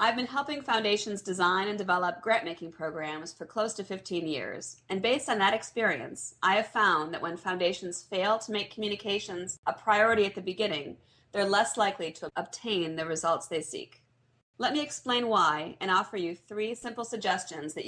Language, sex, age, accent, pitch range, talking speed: English, female, 40-59, American, 170-215 Hz, 185 wpm